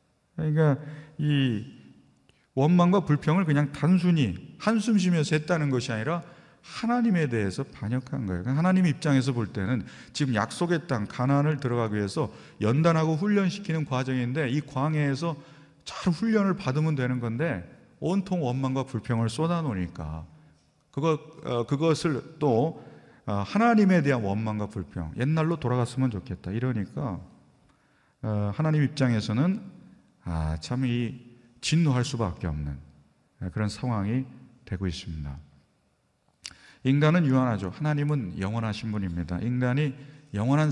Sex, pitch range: male, 105-155 Hz